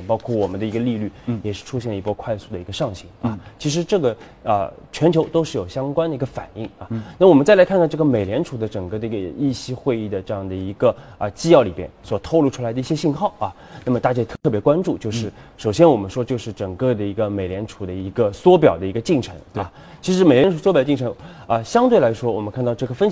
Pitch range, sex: 110-170 Hz, male